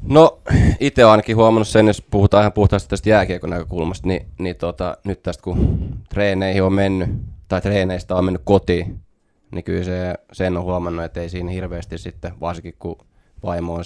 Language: Finnish